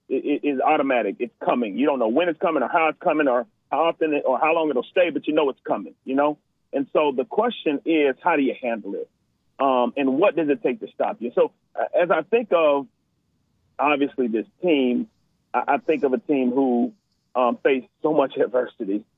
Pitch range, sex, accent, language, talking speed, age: 125-175 Hz, male, American, English, 210 wpm, 40-59